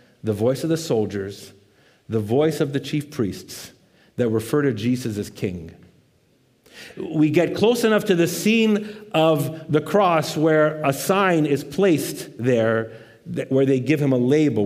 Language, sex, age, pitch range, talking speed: English, male, 50-69, 120-190 Hz, 160 wpm